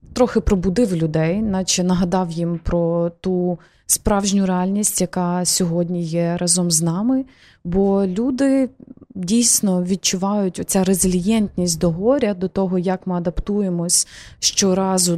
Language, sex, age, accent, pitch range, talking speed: Ukrainian, female, 20-39, native, 175-205 Hz, 120 wpm